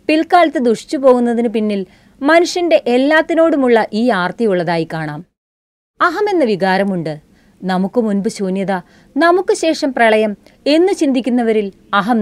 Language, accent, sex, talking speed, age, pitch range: Malayalam, native, female, 100 wpm, 30-49, 190-270 Hz